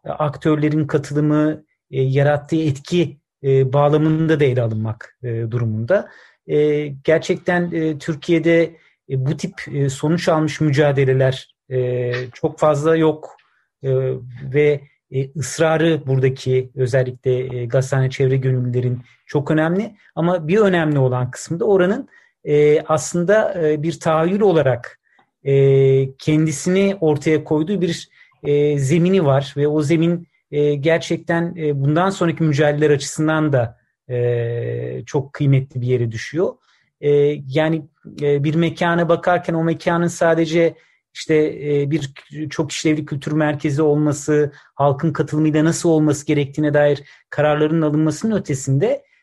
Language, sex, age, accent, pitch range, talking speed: Turkish, male, 40-59, native, 135-165 Hz, 110 wpm